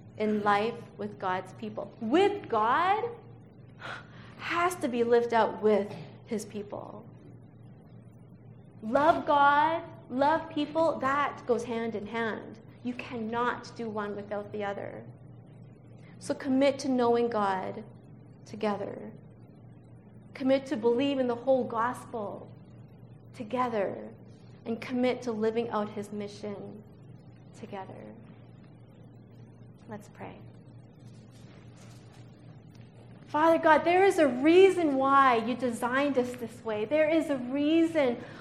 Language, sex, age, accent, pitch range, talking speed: English, female, 30-49, American, 225-290 Hz, 110 wpm